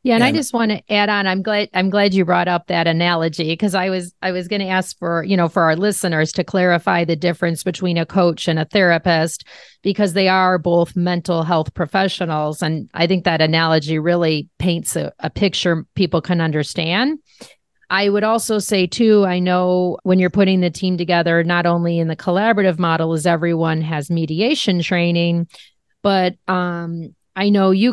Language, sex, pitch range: English, female, 170-200 Hz